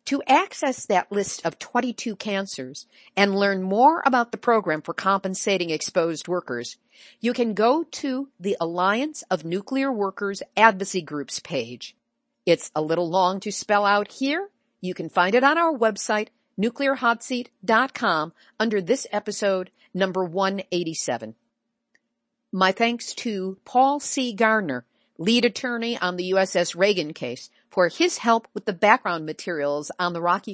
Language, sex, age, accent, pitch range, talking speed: English, female, 50-69, American, 180-250 Hz, 145 wpm